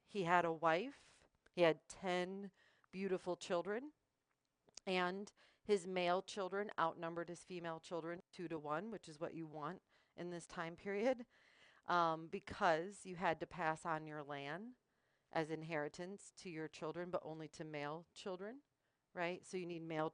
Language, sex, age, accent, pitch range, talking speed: English, female, 40-59, American, 160-200 Hz, 160 wpm